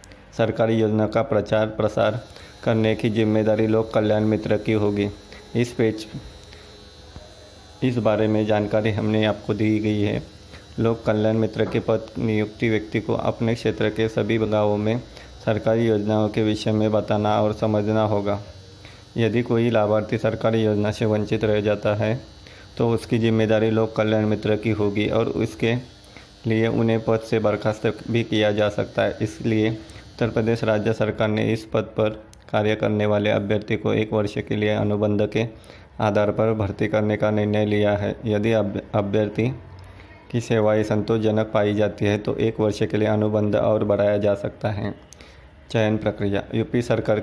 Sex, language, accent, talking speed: male, Hindi, native, 165 wpm